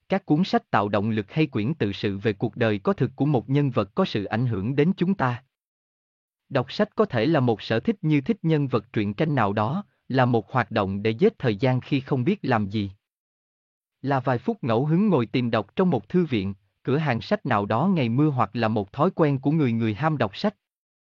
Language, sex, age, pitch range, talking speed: Vietnamese, male, 20-39, 110-160 Hz, 240 wpm